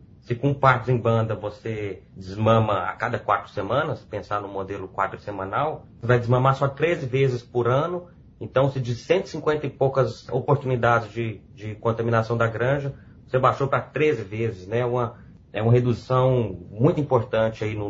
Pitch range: 105-130 Hz